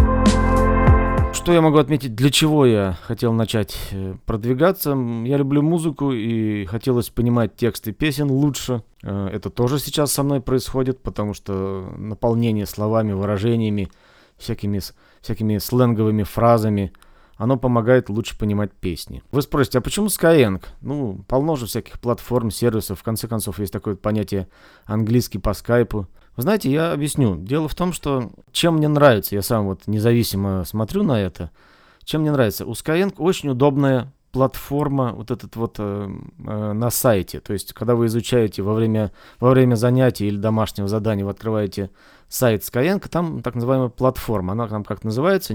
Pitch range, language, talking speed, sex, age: 105-130 Hz, Russian, 150 wpm, male, 30-49